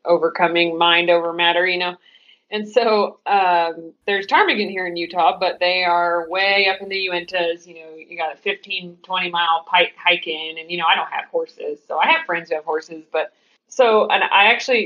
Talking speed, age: 210 wpm, 30-49